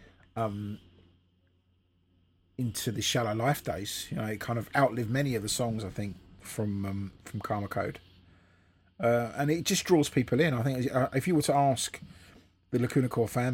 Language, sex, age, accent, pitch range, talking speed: English, male, 30-49, British, 95-130 Hz, 185 wpm